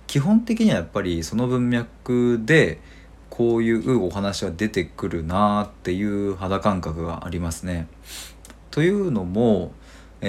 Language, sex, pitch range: Japanese, male, 85-115 Hz